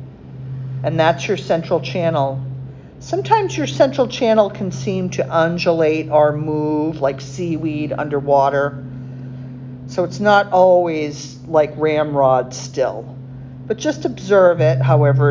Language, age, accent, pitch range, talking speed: English, 50-69, American, 130-150 Hz, 120 wpm